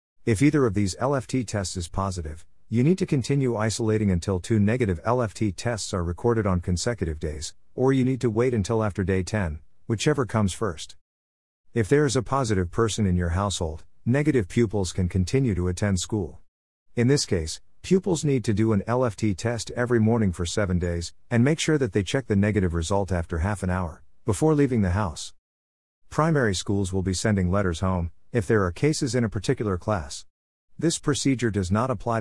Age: 50-69